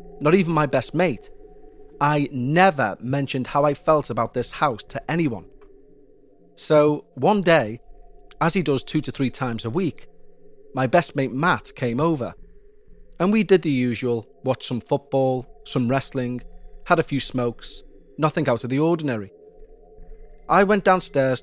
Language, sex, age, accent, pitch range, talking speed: English, male, 30-49, British, 125-185 Hz, 155 wpm